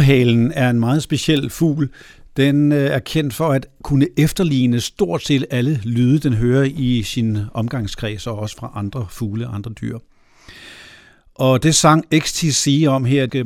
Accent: native